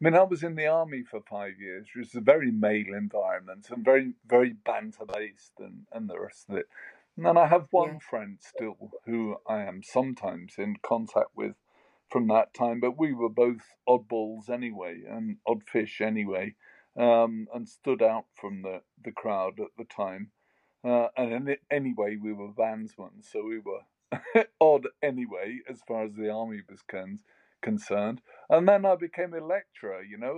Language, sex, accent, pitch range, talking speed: English, male, British, 115-165 Hz, 180 wpm